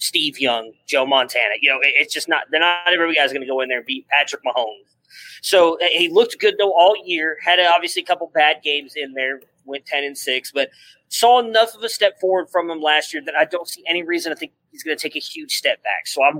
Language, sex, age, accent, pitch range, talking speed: English, male, 30-49, American, 140-190 Hz, 255 wpm